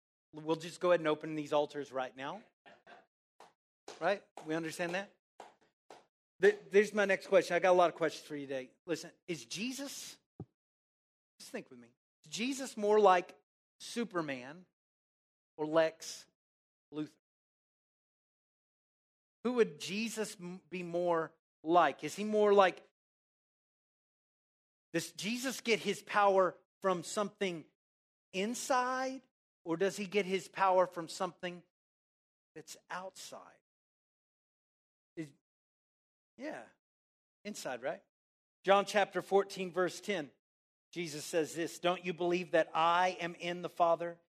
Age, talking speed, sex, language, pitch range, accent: 40-59, 120 wpm, male, English, 165-205 Hz, American